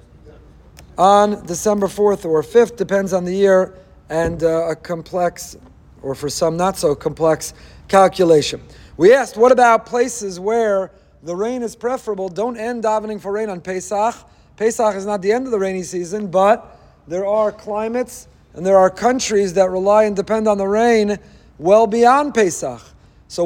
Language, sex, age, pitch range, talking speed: English, male, 40-59, 180-220 Hz, 165 wpm